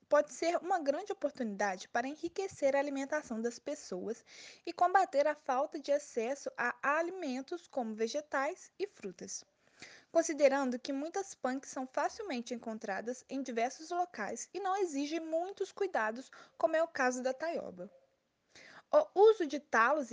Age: 20-39